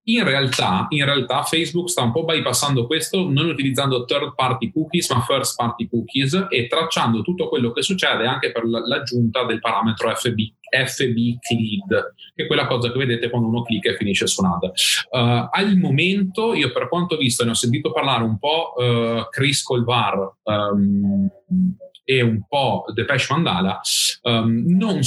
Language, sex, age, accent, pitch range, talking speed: Italian, male, 30-49, native, 115-140 Hz, 170 wpm